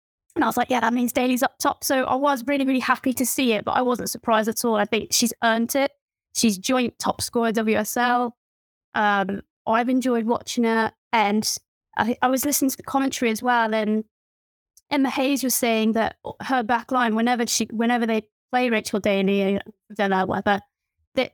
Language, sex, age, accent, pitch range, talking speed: English, female, 20-39, British, 215-260 Hz, 200 wpm